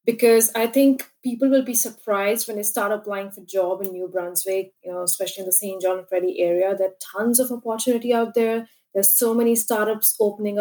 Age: 20-39